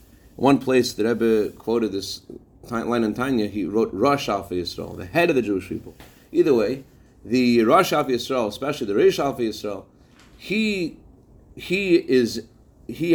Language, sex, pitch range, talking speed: English, male, 110-155 Hz, 160 wpm